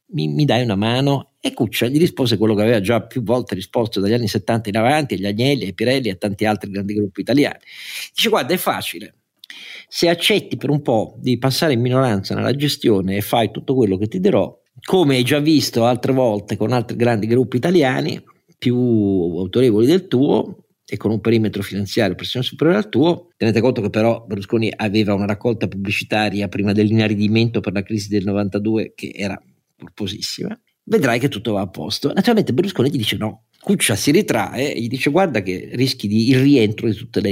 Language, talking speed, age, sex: Italian, 195 wpm, 50-69, male